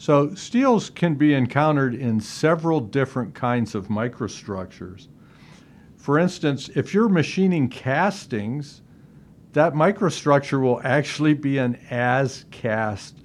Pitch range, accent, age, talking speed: 110-145 Hz, American, 50-69, 110 wpm